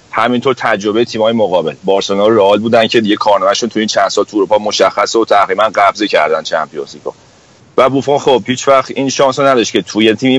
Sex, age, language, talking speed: male, 40-59, Persian, 185 wpm